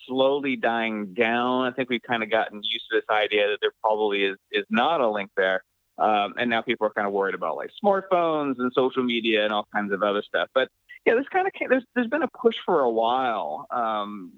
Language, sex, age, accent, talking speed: English, male, 30-49, American, 240 wpm